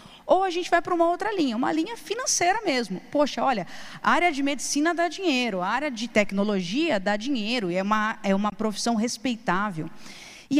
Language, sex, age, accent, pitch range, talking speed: Portuguese, female, 20-39, Brazilian, 225-295 Hz, 185 wpm